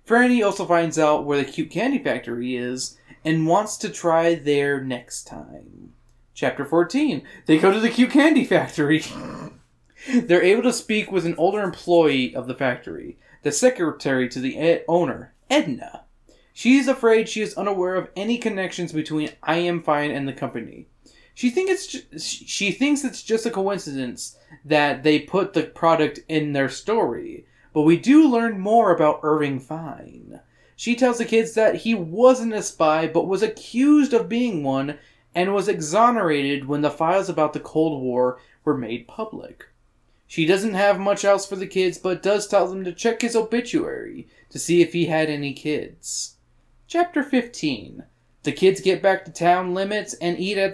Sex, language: male, English